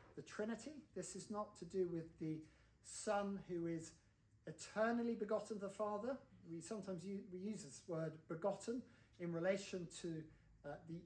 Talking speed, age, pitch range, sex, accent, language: 165 wpm, 40-59, 165-215 Hz, male, British, English